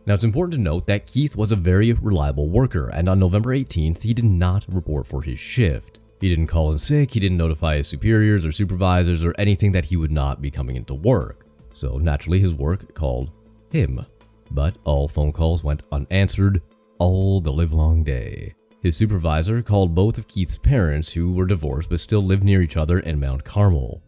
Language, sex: English, male